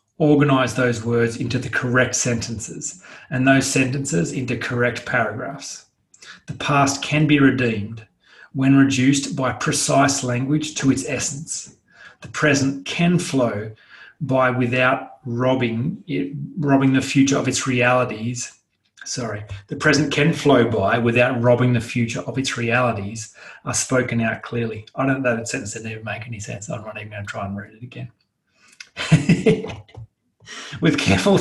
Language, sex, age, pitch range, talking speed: English, male, 30-49, 115-135 Hz, 155 wpm